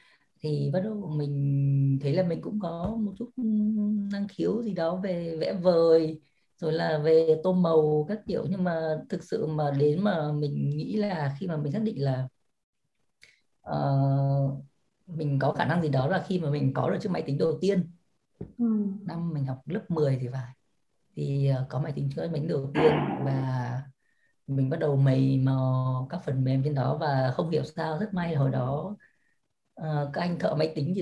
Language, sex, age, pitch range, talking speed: Vietnamese, female, 20-39, 140-180 Hz, 195 wpm